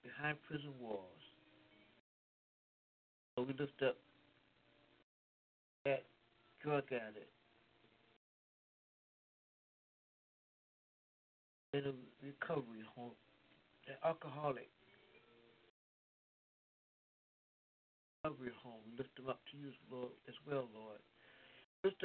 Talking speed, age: 80 wpm, 60-79